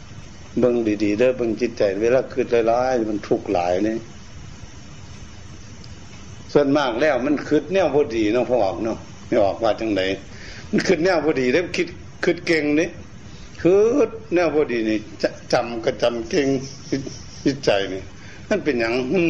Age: 60-79